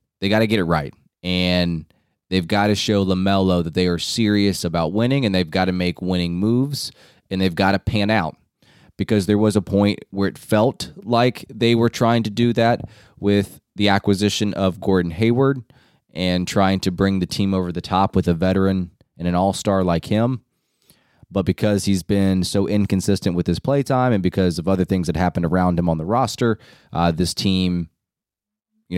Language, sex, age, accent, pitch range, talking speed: English, male, 20-39, American, 90-110 Hz, 195 wpm